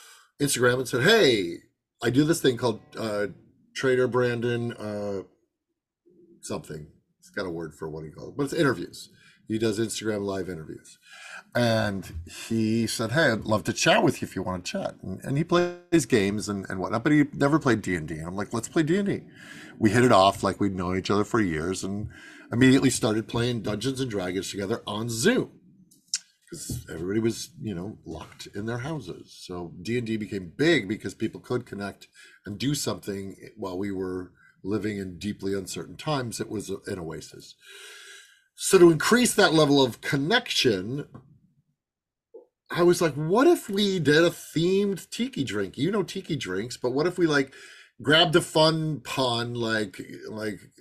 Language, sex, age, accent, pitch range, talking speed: English, male, 50-69, American, 105-155 Hz, 175 wpm